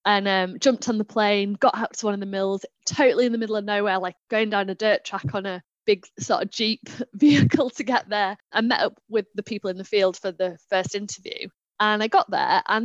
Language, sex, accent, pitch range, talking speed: English, female, British, 210-265 Hz, 245 wpm